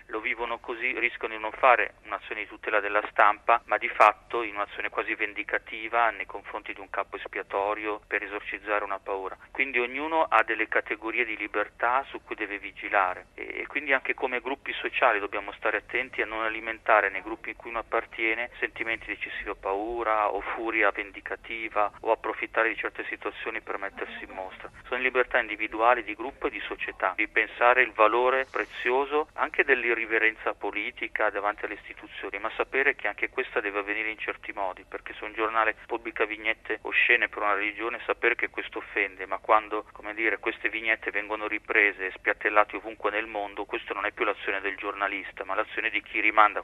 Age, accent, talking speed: 40-59, native, 165 wpm